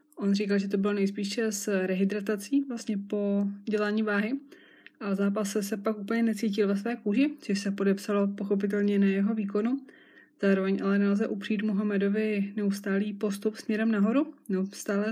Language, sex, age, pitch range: Czech, female, 20-39, 195-220 Hz